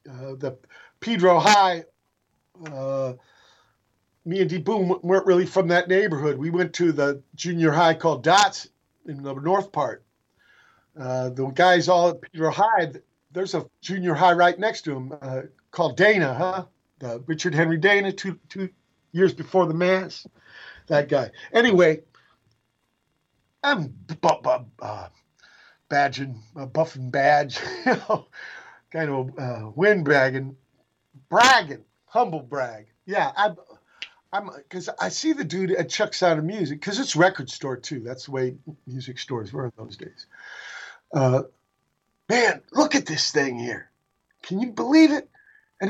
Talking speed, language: 150 wpm, English